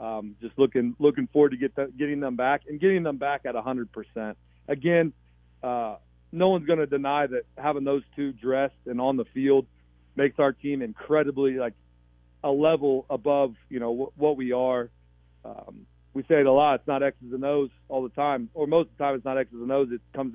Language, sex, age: English, male, 40-59